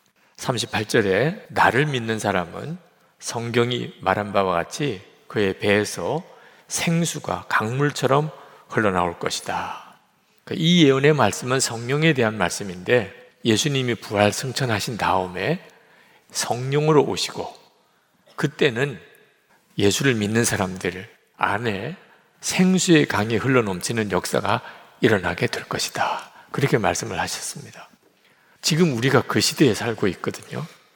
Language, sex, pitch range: Korean, male, 105-140 Hz